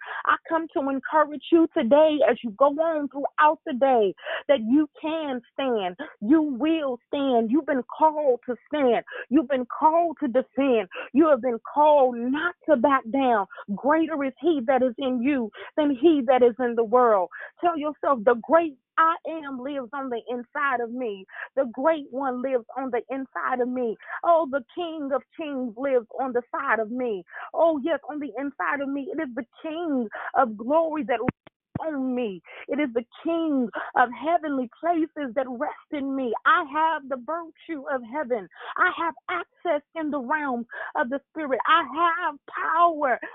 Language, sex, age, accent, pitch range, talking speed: English, female, 30-49, American, 250-320 Hz, 175 wpm